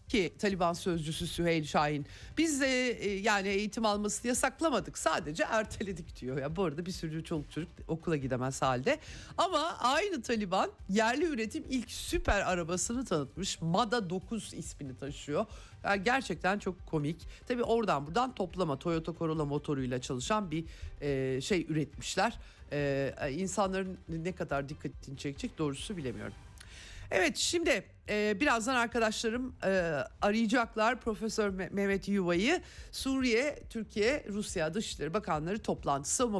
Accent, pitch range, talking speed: native, 155-220 Hz, 130 wpm